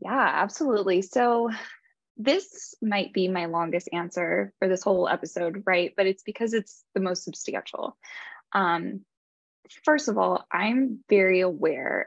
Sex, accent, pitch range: female, American, 175-215 Hz